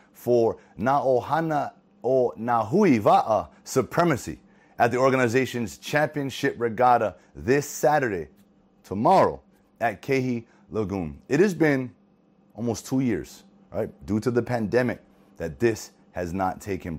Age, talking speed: 30-49, 115 wpm